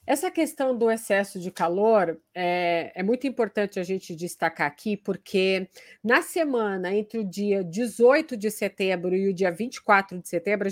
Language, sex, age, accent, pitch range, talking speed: Portuguese, female, 40-59, Brazilian, 210-270 Hz, 170 wpm